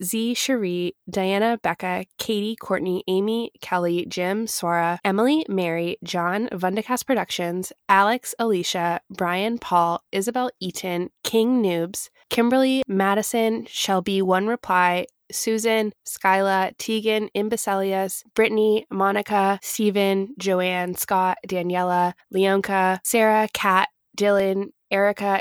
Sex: female